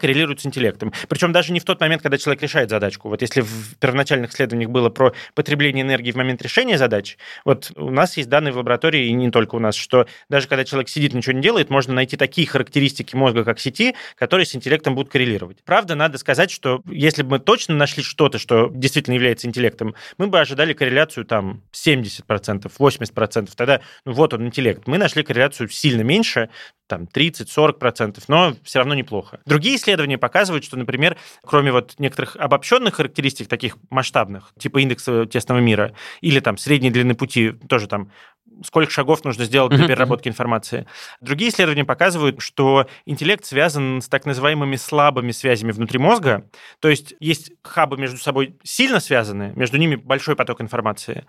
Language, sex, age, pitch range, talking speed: Russian, male, 20-39, 125-150 Hz, 175 wpm